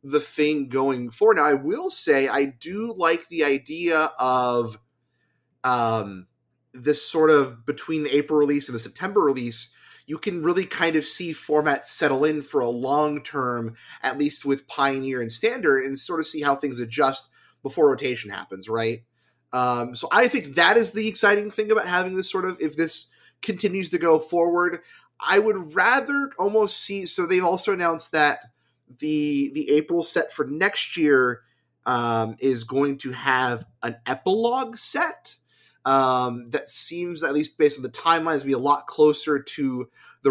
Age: 30-49